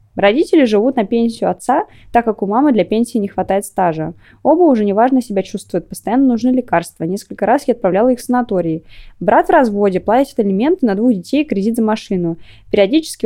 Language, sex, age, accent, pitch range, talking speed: Russian, female, 20-39, native, 185-255 Hz, 190 wpm